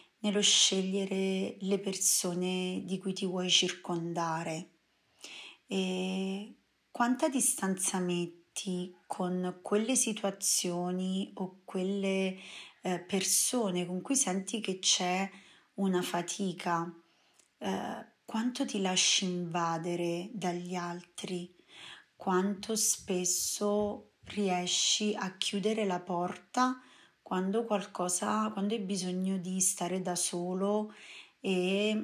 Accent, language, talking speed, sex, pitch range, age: native, Italian, 95 wpm, female, 180-205 Hz, 30-49